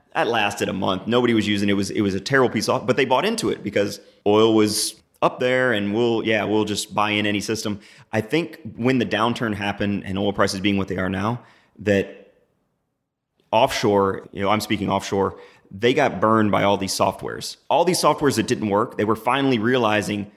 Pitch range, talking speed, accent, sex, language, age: 100-120 Hz, 215 wpm, American, male, English, 30-49